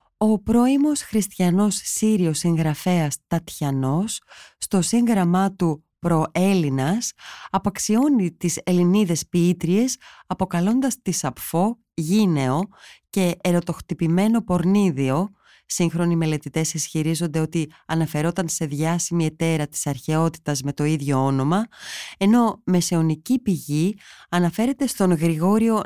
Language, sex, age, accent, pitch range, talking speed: Greek, female, 20-39, native, 160-205 Hz, 95 wpm